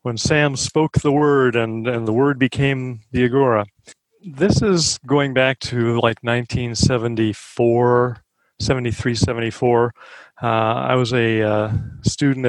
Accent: American